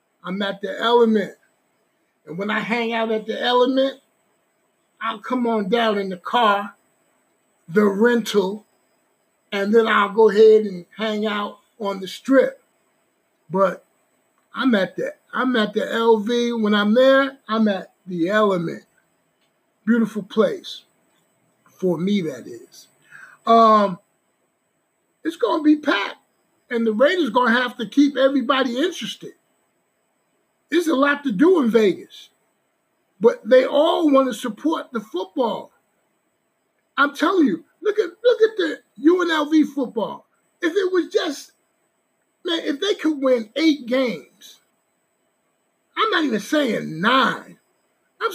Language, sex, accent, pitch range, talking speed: English, male, American, 215-305 Hz, 135 wpm